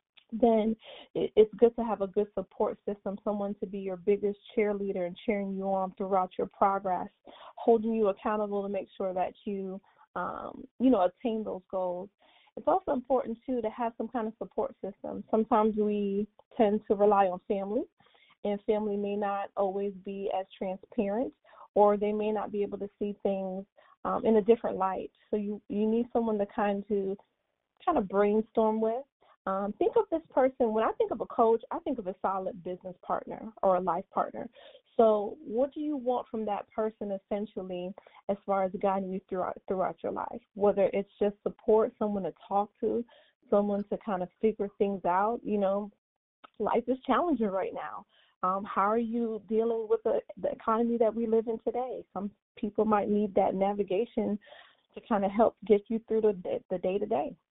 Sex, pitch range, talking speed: female, 200-230 Hz, 190 wpm